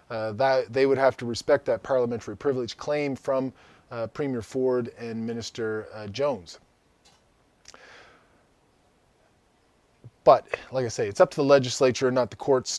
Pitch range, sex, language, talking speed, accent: 115-145 Hz, male, English, 155 wpm, American